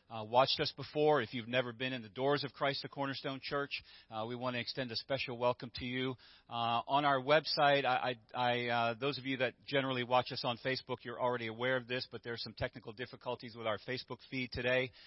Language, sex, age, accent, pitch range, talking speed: English, male, 40-59, American, 115-135 Hz, 225 wpm